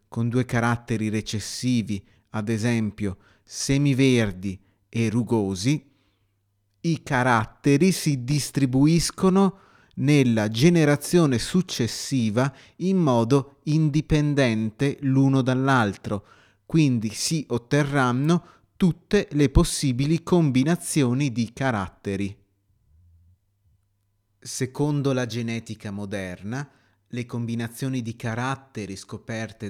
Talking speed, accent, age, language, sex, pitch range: 80 wpm, native, 30-49, Italian, male, 105-145 Hz